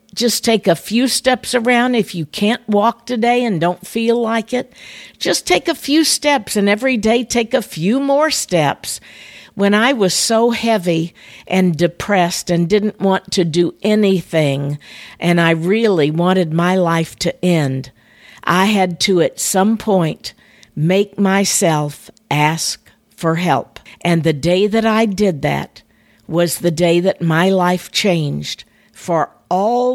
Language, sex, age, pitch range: English, female, 50-69, 170-215 Hz